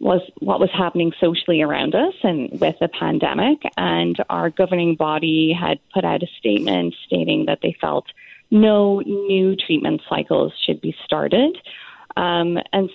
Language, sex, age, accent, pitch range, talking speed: English, female, 20-39, American, 165-195 Hz, 155 wpm